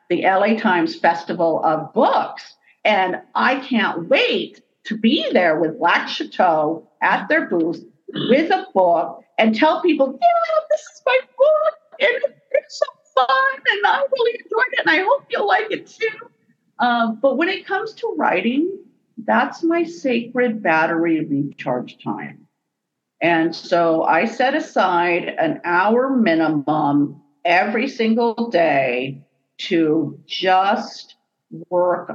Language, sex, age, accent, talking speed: English, female, 50-69, American, 135 wpm